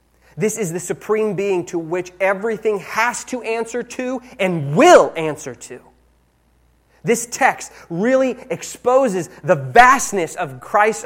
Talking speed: 130 wpm